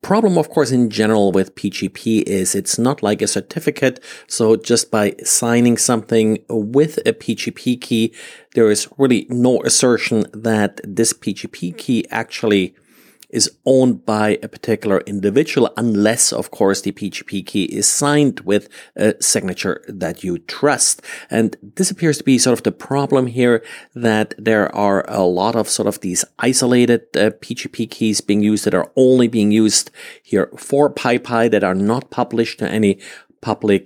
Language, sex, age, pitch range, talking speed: English, male, 40-59, 100-125 Hz, 165 wpm